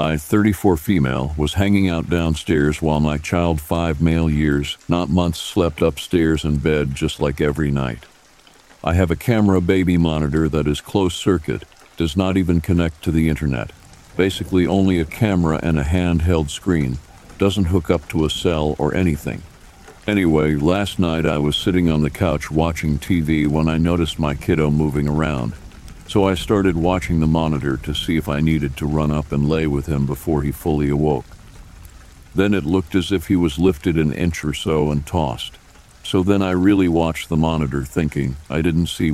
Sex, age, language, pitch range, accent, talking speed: male, 60-79, English, 75-90 Hz, American, 185 wpm